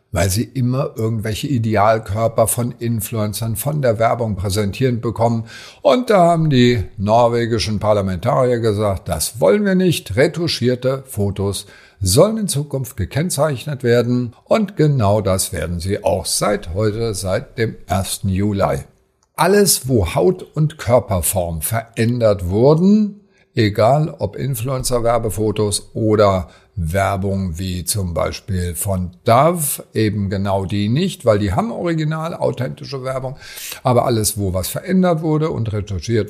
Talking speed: 125 wpm